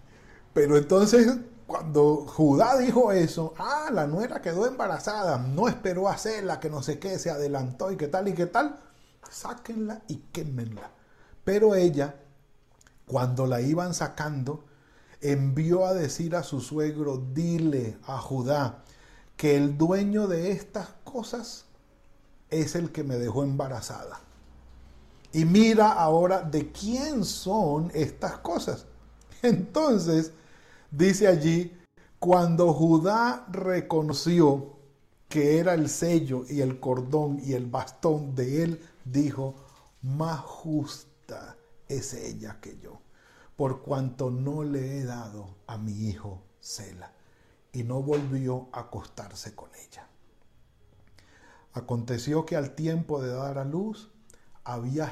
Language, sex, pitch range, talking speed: Spanish, male, 135-175 Hz, 125 wpm